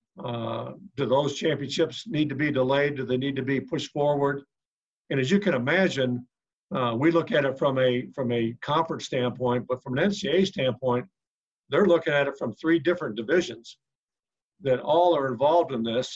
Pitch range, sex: 125-150 Hz, male